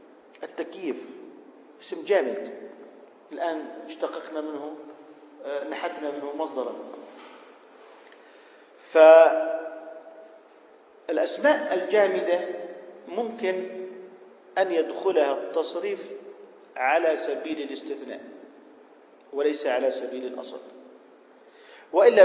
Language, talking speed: Arabic, 60 wpm